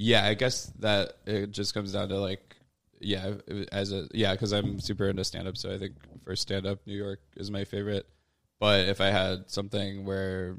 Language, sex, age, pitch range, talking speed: English, male, 20-39, 95-105 Hz, 200 wpm